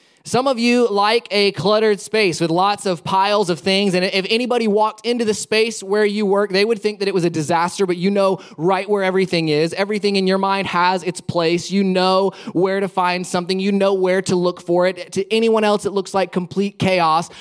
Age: 20-39